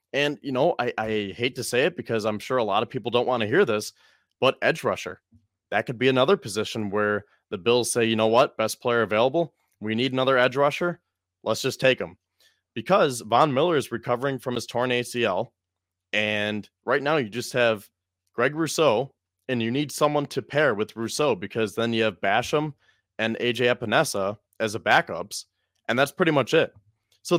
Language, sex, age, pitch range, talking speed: English, male, 20-39, 110-140 Hz, 195 wpm